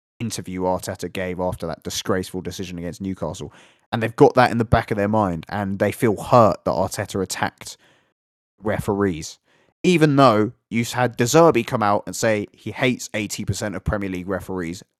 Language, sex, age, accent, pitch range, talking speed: English, male, 20-39, British, 95-115 Hz, 175 wpm